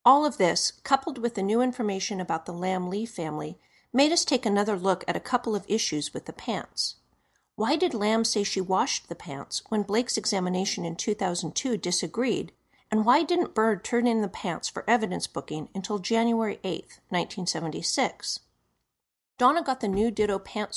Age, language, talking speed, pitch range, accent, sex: 40-59, English, 175 wpm, 185-240 Hz, American, female